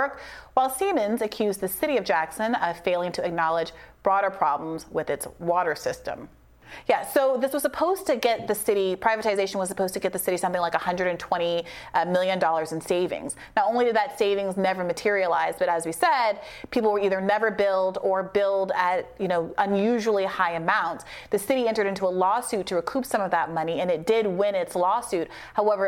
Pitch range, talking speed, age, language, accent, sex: 180-235 Hz, 190 wpm, 30-49, English, American, female